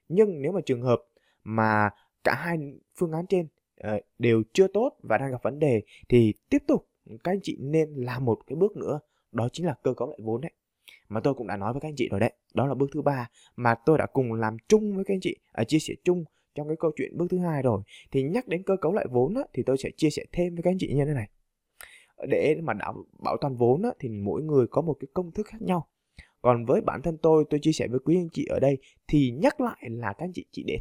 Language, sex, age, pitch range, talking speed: Vietnamese, male, 20-39, 115-165 Hz, 265 wpm